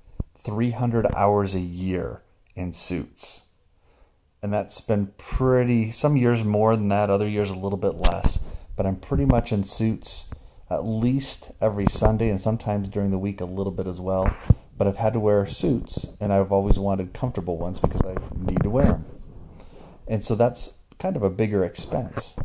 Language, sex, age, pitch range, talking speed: English, male, 30-49, 95-110 Hz, 180 wpm